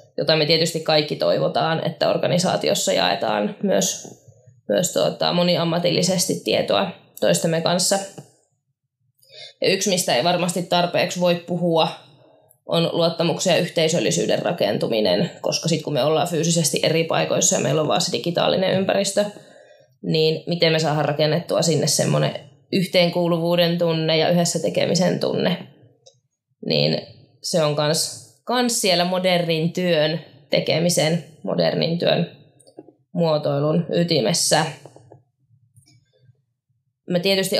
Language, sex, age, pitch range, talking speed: Finnish, female, 20-39, 150-175 Hz, 115 wpm